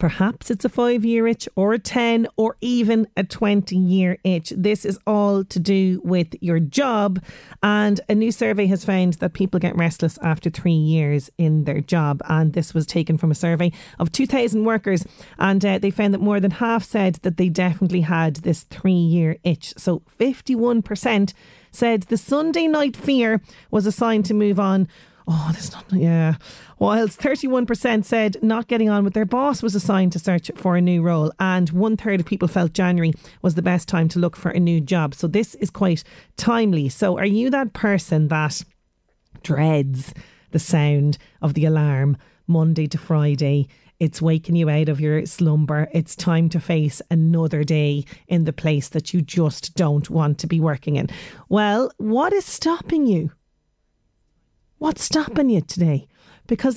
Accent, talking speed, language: Irish, 180 wpm, English